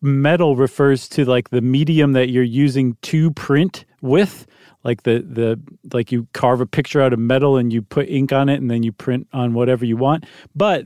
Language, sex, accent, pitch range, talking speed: English, male, American, 130-160 Hz, 210 wpm